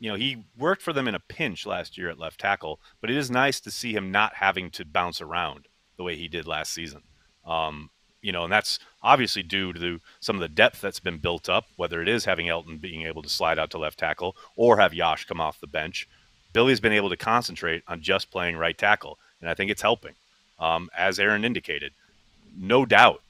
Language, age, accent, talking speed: English, 30-49, American, 230 wpm